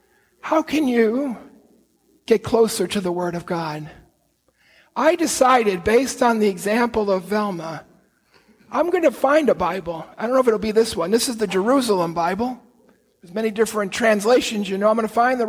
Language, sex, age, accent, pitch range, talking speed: English, male, 50-69, American, 205-270 Hz, 190 wpm